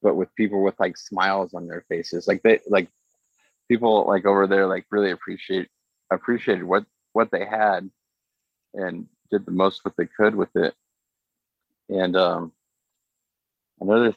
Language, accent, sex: English, American, male